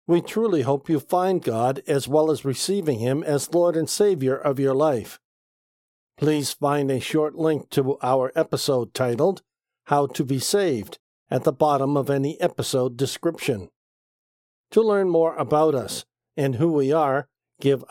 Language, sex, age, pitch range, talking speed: English, male, 50-69, 135-165 Hz, 160 wpm